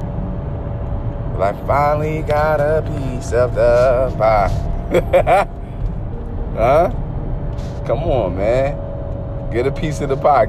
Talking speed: 105 wpm